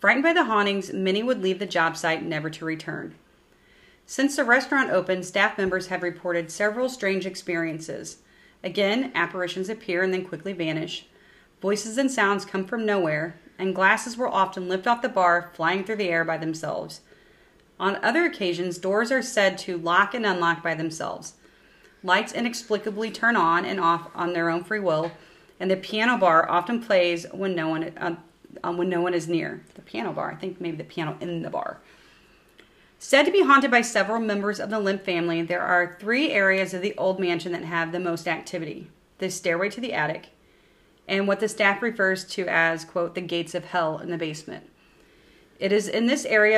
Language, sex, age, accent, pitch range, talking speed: English, female, 30-49, American, 170-210 Hz, 195 wpm